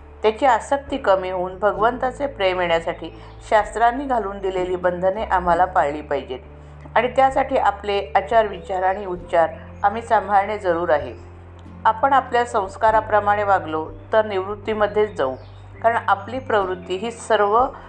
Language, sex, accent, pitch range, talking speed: Marathi, female, native, 170-225 Hz, 125 wpm